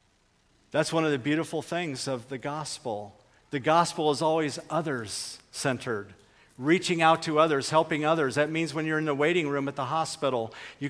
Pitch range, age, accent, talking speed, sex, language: 115-150 Hz, 50-69, American, 175 wpm, male, English